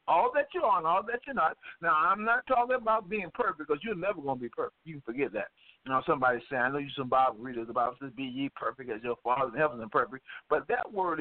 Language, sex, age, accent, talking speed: English, male, 50-69, American, 290 wpm